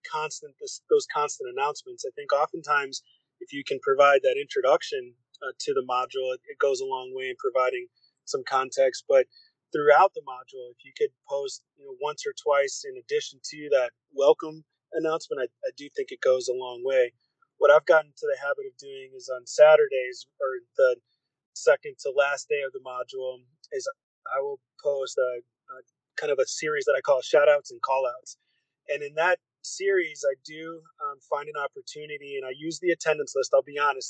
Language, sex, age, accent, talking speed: English, male, 30-49, American, 195 wpm